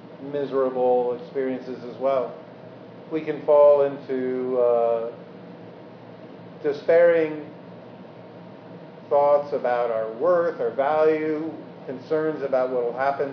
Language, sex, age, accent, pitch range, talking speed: English, male, 50-69, American, 130-160 Hz, 95 wpm